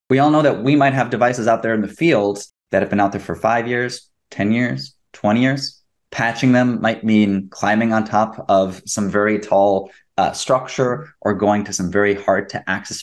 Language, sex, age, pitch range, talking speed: English, male, 20-39, 105-135 Hz, 210 wpm